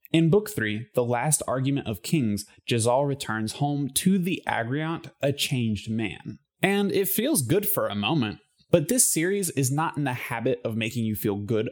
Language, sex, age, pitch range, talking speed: English, male, 20-39, 115-165 Hz, 190 wpm